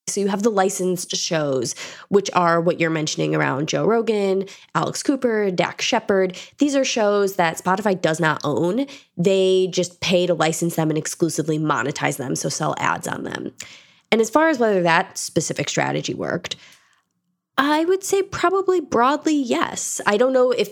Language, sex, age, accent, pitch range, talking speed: English, female, 20-39, American, 160-205 Hz, 175 wpm